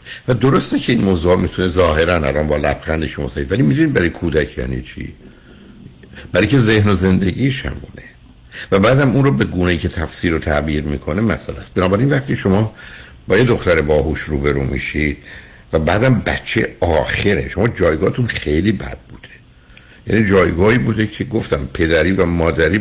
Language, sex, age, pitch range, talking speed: Persian, male, 60-79, 75-100 Hz, 165 wpm